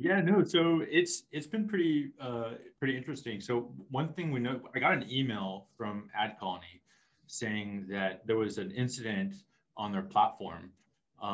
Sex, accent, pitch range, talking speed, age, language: male, American, 105-130 Hz, 165 wpm, 20-39, English